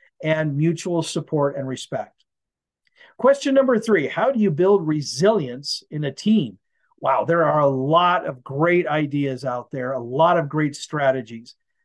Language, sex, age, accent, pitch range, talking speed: English, male, 50-69, American, 140-215 Hz, 155 wpm